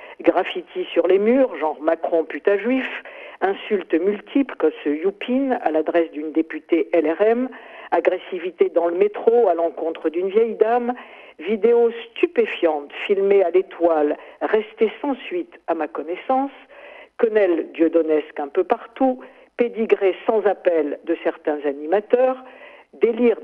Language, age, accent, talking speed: French, 50-69, French, 130 wpm